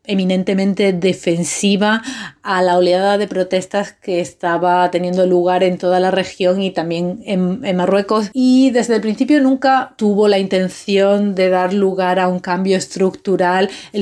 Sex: female